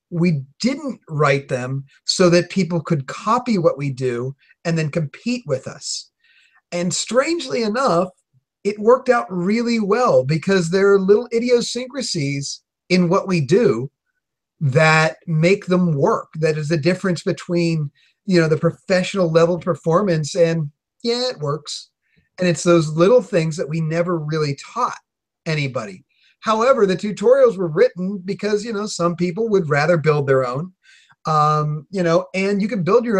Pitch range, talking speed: 155-205 Hz, 155 wpm